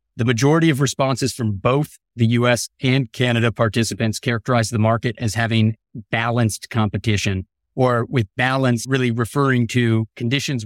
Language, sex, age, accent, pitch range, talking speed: English, male, 30-49, American, 115-135 Hz, 140 wpm